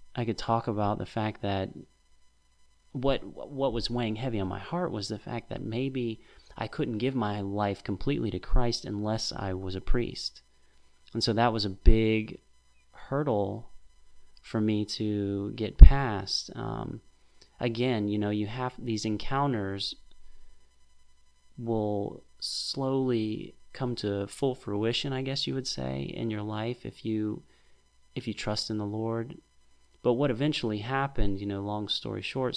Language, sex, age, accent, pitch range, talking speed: English, male, 30-49, American, 95-120 Hz, 155 wpm